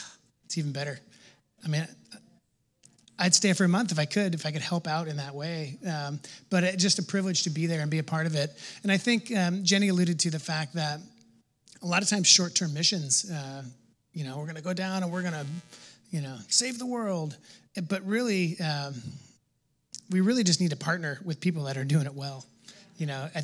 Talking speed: 230 wpm